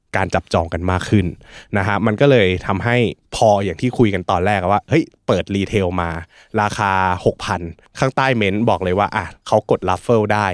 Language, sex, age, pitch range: Thai, male, 20-39, 90-110 Hz